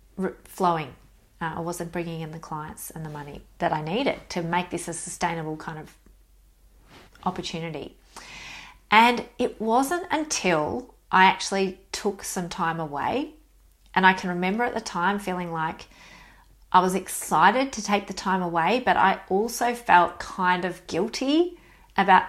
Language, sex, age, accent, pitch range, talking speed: English, female, 30-49, Australian, 175-205 Hz, 155 wpm